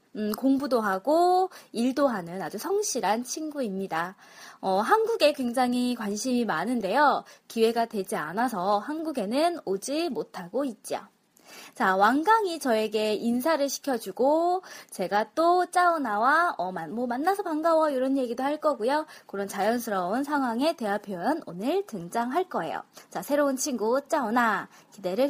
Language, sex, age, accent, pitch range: Korean, female, 20-39, native, 215-330 Hz